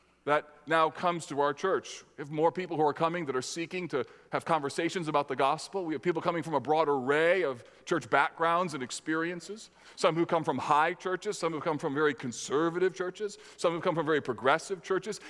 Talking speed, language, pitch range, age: 215 wpm, English, 150-215 Hz, 40-59